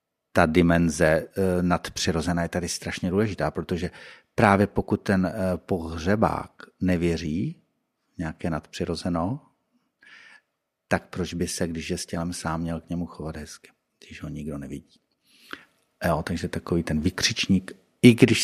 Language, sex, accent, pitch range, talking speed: Czech, male, native, 80-95 Hz, 130 wpm